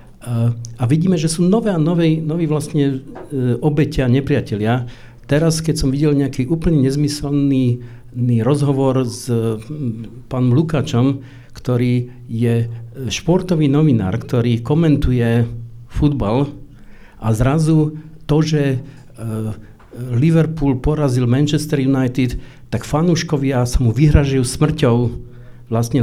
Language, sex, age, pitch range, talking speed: Slovak, male, 50-69, 120-150 Hz, 105 wpm